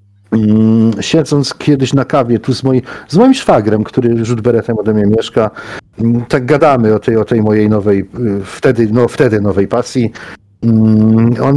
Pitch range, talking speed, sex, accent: 110-175 Hz, 140 wpm, male, native